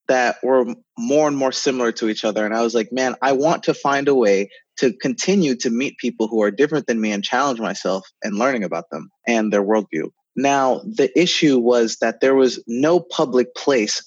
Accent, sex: American, male